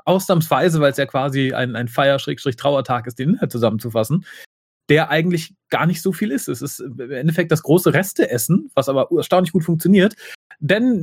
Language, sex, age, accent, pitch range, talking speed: German, male, 30-49, German, 135-180 Hz, 170 wpm